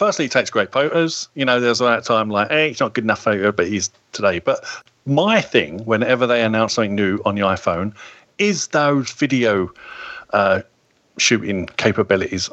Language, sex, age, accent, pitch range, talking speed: English, male, 40-59, British, 115-150 Hz, 185 wpm